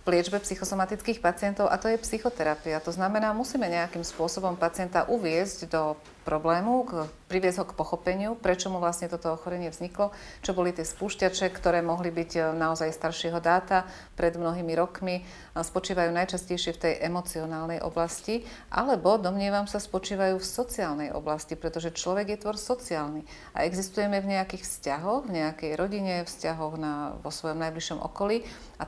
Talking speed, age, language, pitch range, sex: 150 wpm, 30-49, Slovak, 165-195 Hz, female